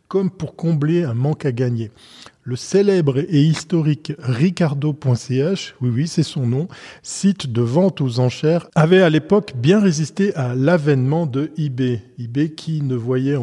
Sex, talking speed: male, 155 wpm